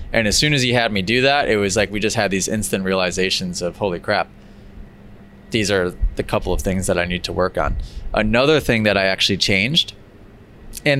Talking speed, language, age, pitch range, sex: 220 wpm, English, 20-39, 100-130 Hz, male